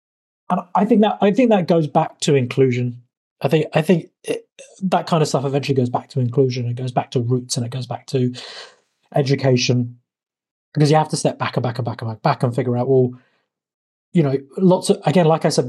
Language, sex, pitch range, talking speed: English, male, 130-165 Hz, 230 wpm